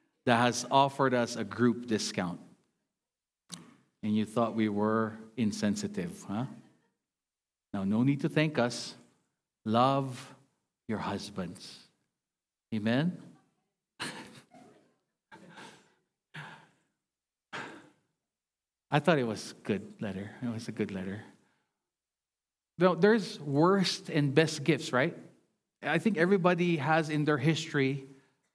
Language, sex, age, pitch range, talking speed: English, male, 50-69, 125-170 Hz, 105 wpm